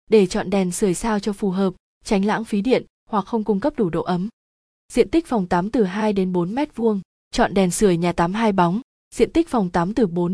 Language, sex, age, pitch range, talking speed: Vietnamese, female, 20-39, 185-230 Hz, 240 wpm